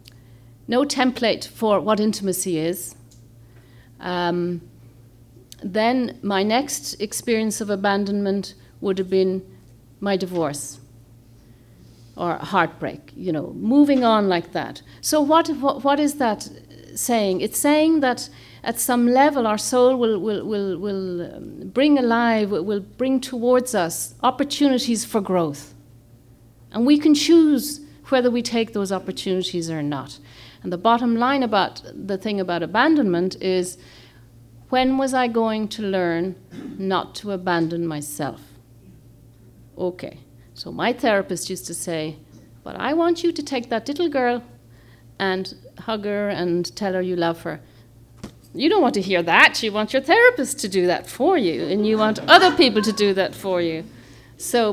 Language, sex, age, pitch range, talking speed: English, female, 50-69, 165-245 Hz, 150 wpm